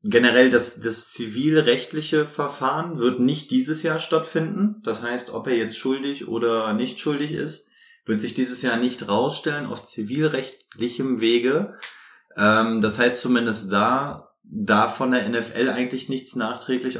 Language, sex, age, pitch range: German, male, 20-39, 110-140 Hz